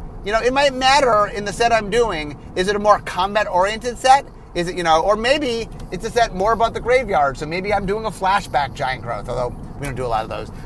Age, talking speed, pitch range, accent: 30-49, 255 wpm, 175-230 Hz, American